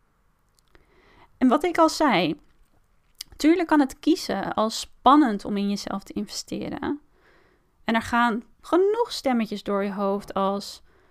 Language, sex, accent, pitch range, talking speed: Dutch, female, Dutch, 215-300 Hz, 135 wpm